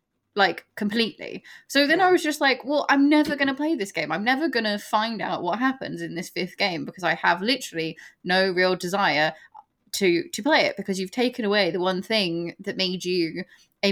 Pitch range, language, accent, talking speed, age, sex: 175-230 Hz, English, British, 215 wpm, 10-29, female